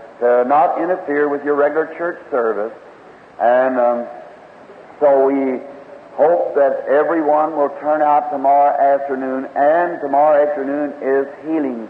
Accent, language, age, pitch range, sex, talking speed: American, English, 60-79, 125-145 Hz, male, 125 wpm